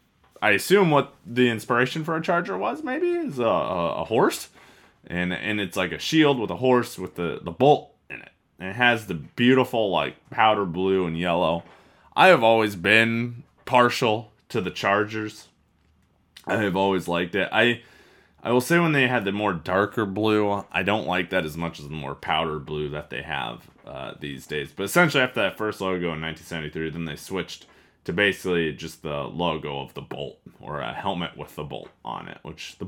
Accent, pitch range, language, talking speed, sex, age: American, 80-115 Hz, English, 200 wpm, male, 20-39